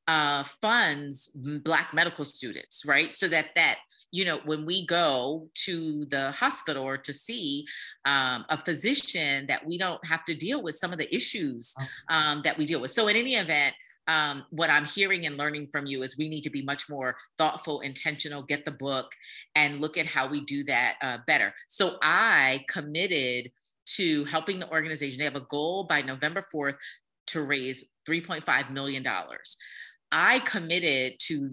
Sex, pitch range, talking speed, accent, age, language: female, 145-185 Hz, 180 wpm, American, 30-49, English